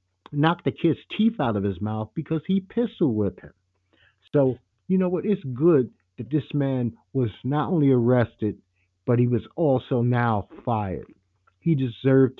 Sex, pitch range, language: male, 110-160 Hz, English